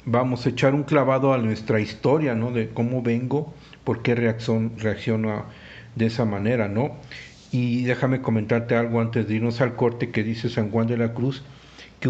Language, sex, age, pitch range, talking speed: Spanish, male, 50-69, 115-145 Hz, 180 wpm